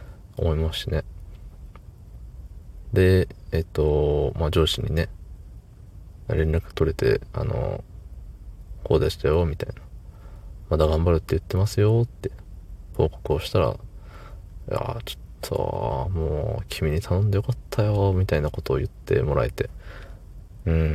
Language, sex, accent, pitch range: Japanese, male, native, 80-105 Hz